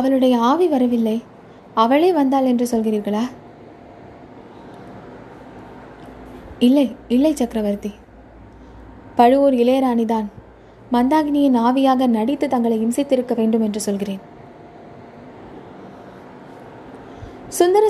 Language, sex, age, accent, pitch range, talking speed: Tamil, female, 20-39, native, 230-280 Hz, 65 wpm